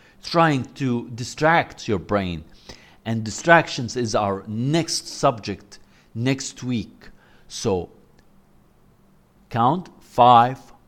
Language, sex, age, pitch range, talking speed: English, male, 50-69, 105-135 Hz, 90 wpm